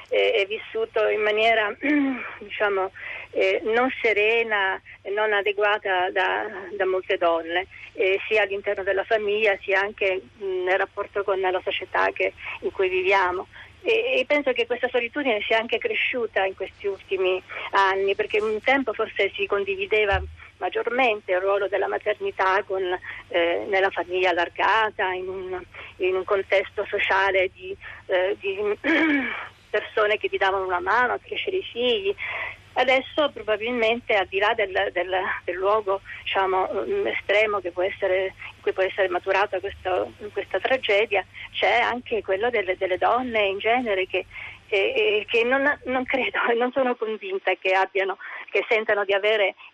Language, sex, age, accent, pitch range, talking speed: Italian, female, 40-59, native, 190-245 Hz, 150 wpm